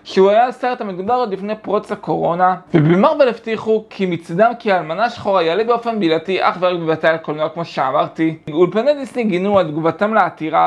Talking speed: 170 wpm